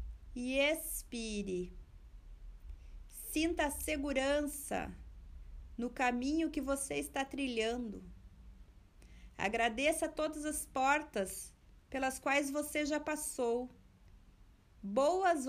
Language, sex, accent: Portuguese, female, Brazilian